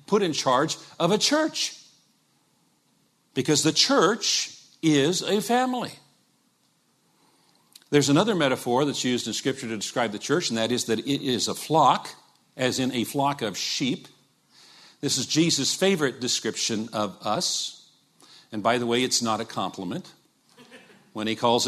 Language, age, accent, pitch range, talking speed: English, 50-69, American, 115-155 Hz, 150 wpm